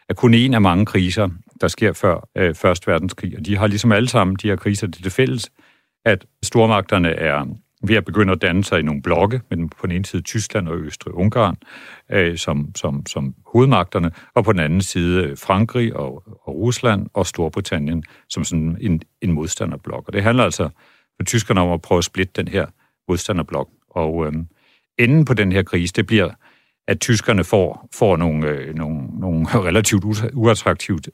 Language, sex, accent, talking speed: Danish, male, native, 190 wpm